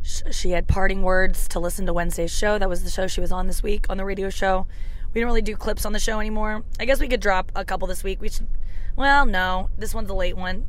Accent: American